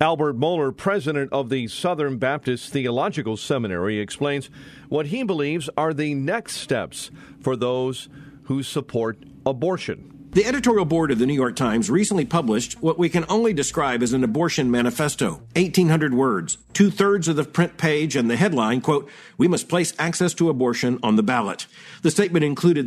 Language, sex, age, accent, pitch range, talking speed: English, male, 50-69, American, 135-185 Hz, 170 wpm